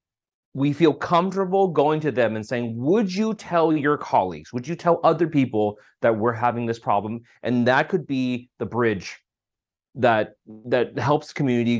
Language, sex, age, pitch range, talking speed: English, male, 30-49, 115-155 Hz, 170 wpm